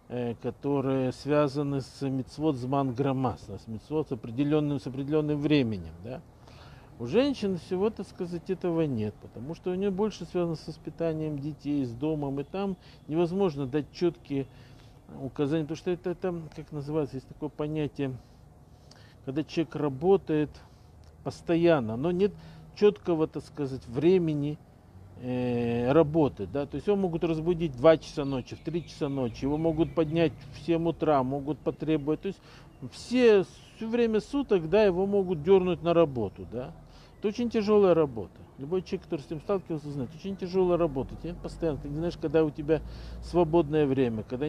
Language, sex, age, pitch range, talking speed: Russian, male, 50-69, 135-180 Hz, 155 wpm